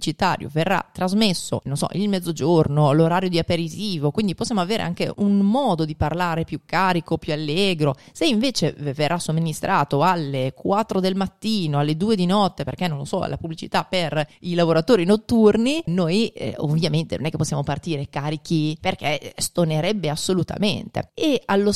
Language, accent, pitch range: Italian, native, 160-205 Hz